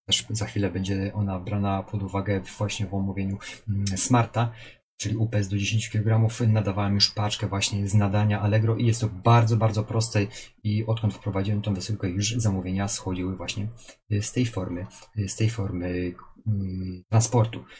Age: 30-49